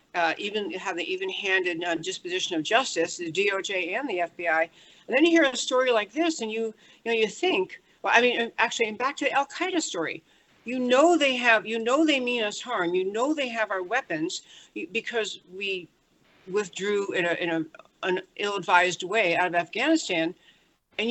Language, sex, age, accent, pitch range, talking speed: English, female, 60-79, American, 185-250 Hz, 195 wpm